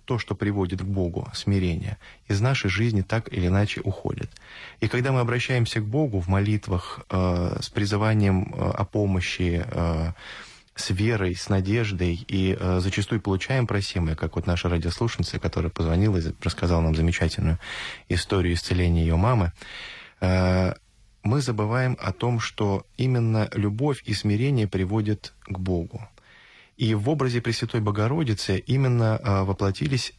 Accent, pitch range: native, 95-115 Hz